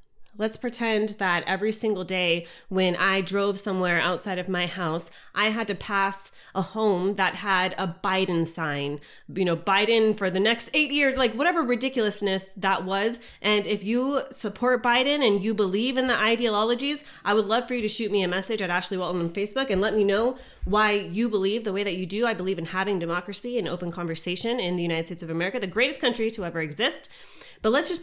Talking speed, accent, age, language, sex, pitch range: 210 wpm, American, 20-39, English, female, 185-235 Hz